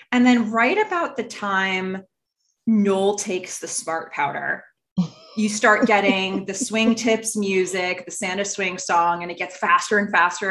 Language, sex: English, female